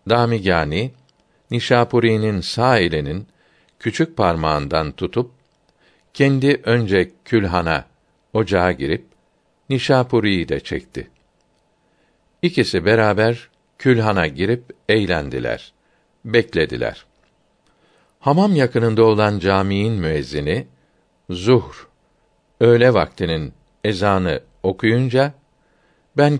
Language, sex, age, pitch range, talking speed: Turkish, male, 60-79, 90-120 Hz, 70 wpm